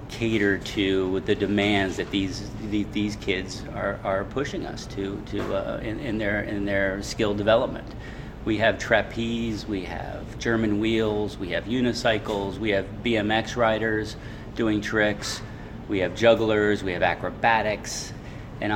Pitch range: 100-110 Hz